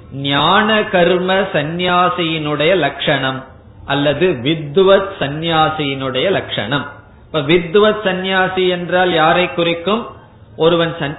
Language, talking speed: Tamil, 75 wpm